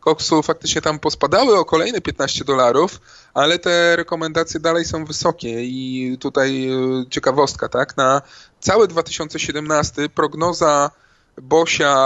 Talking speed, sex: 115 wpm, male